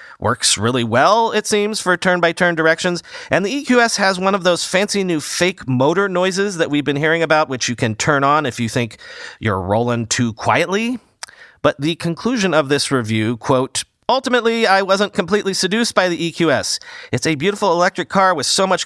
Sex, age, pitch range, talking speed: male, 40-59, 140-195 Hz, 190 wpm